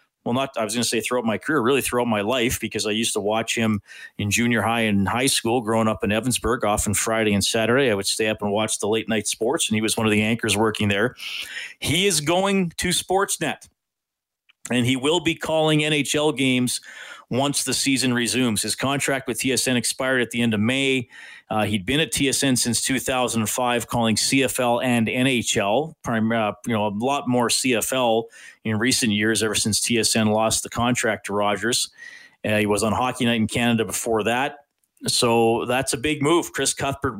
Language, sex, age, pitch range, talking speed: English, male, 40-59, 110-130 Hz, 200 wpm